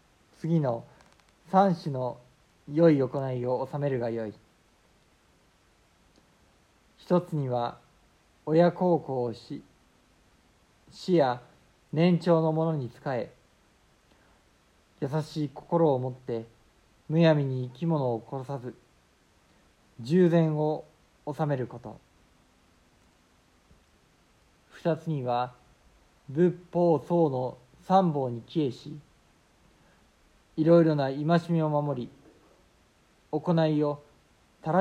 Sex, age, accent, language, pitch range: male, 50-69, native, Japanese, 120-160 Hz